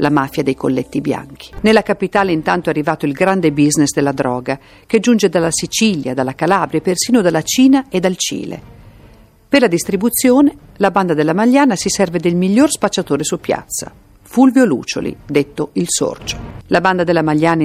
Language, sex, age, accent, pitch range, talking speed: Italian, female, 50-69, native, 145-195 Hz, 175 wpm